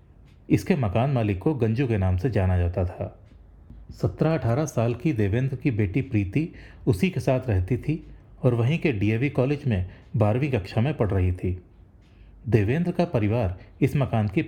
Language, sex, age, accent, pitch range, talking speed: English, male, 30-49, Indian, 95-135 Hz, 170 wpm